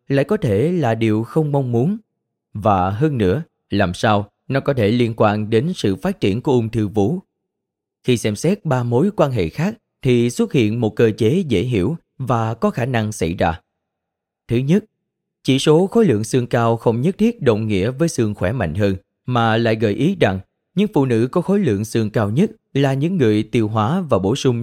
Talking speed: 215 wpm